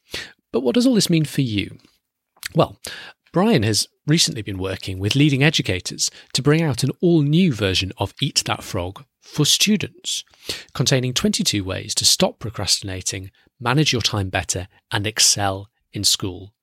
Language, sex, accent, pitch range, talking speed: English, male, British, 100-140 Hz, 160 wpm